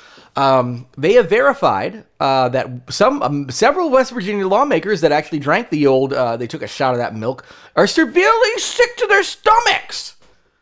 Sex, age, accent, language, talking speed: male, 30-49, American, English, 175 wpm